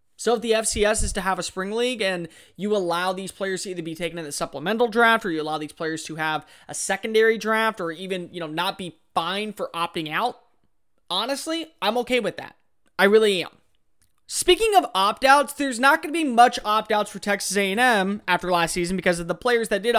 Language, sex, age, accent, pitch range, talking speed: English, male, 20-39, American, 180-250 Hz, 220 wpm